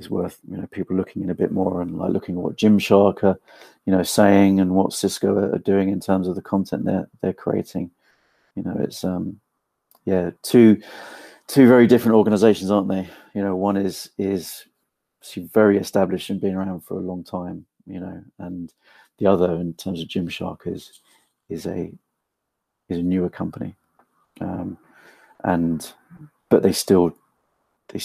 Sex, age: male, 40-59